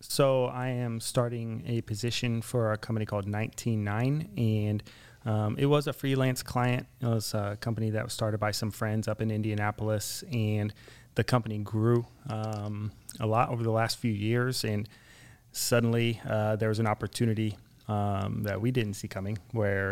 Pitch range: 105-120 Hz